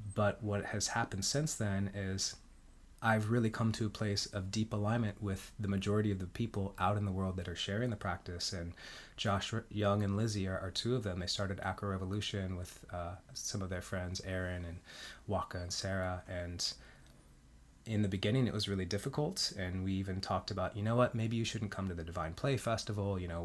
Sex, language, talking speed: male, English, 210 wpm